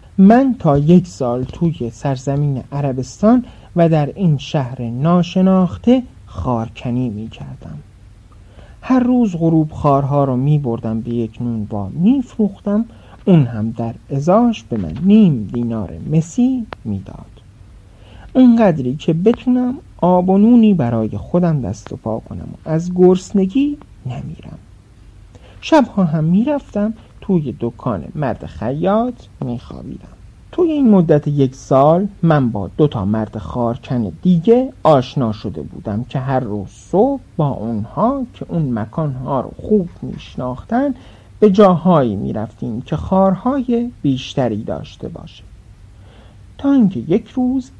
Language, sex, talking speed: Persian, male, 130 wpm